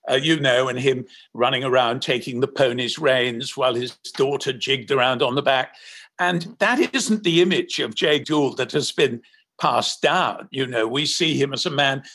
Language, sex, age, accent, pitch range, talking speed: English, male, 60-79, British, 145-195 Hz, 200 wpm